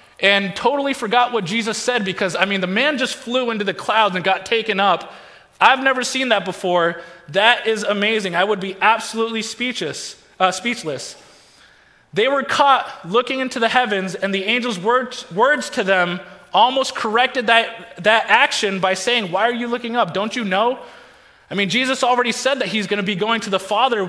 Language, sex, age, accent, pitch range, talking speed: English, male, 20-39, American, 205-260 Hz, 190 wpm